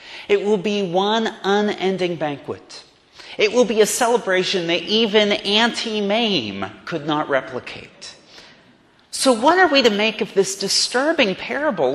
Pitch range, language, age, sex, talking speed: 175-240 Hz, English, 30-49, male, 140 wpm